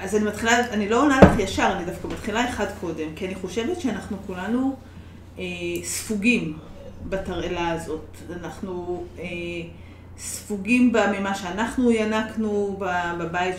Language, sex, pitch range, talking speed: Hebrew, female, 175-235 Hz, 135 wpm